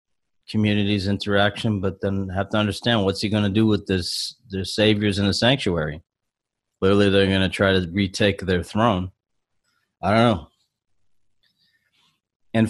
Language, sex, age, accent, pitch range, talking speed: English, male, 30-49, American, 95-105 Hz, 150 wpm